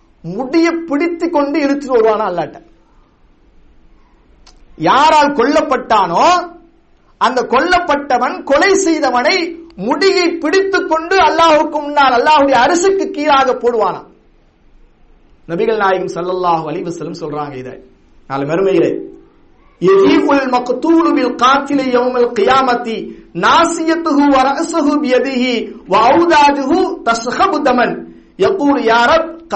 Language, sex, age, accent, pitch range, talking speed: English, male, 50-69, Indian, 230-320 Hz, 65 wpm